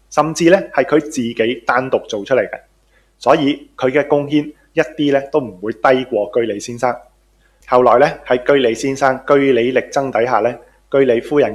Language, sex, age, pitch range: Chinese, male, 20-39, 120-155 Hz